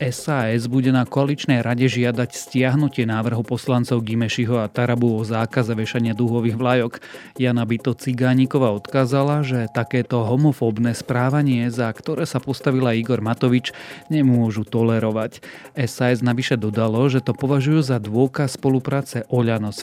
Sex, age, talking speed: male, 30-49, 135 wpm